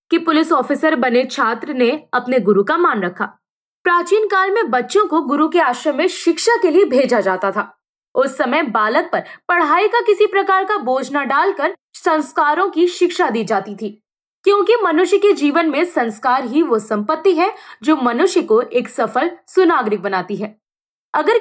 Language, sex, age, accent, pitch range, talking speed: Hindi, female, 20-39, native, 245-360 Hz, 175 wpm